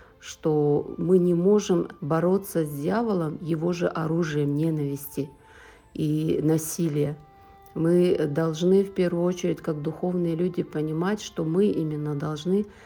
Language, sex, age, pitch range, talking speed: Ukrainian, female, 50-69, 155-180 Hz, 120 wpm